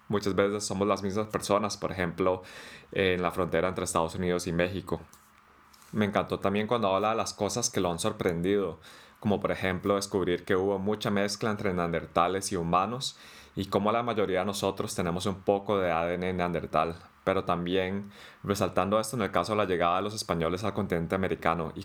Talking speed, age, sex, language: 190 wpm, 20-39, male, English